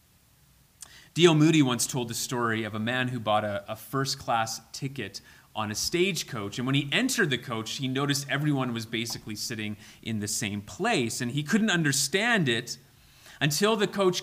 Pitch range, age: 110-145 Hz, 30-49